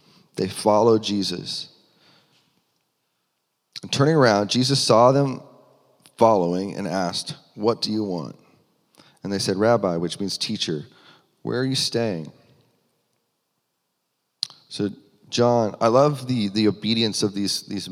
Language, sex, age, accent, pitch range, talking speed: English, male, 30-49, American, 100-130 Hz, 125 wpm